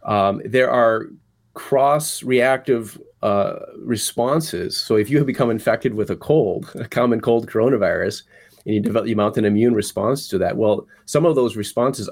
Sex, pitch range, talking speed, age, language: male, 100-115 Hz, 170 wpm, 30-49, English